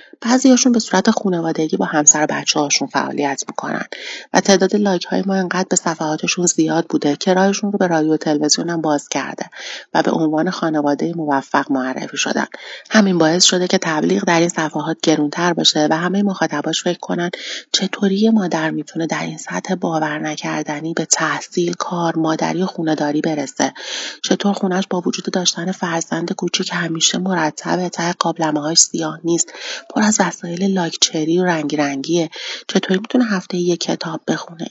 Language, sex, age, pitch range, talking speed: Persian, female, 30-49, 160-190 Hz, 160 wpm